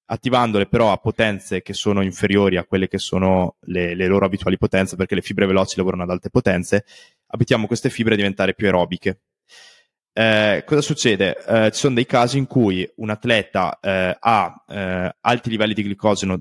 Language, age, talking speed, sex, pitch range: Italian, 20-39, 185 wpm, male, 95-115 Hz